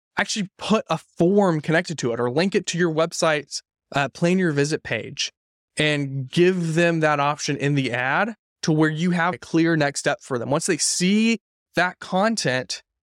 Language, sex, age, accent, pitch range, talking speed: English, male, 10-29, American, 145-190 Hz, 190 wpm